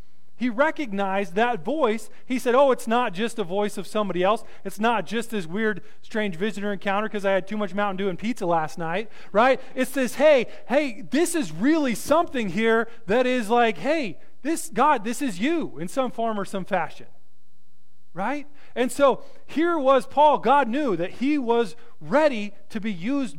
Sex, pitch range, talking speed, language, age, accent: male, 185-250 Hz, 190 wpm, English, 30-49, American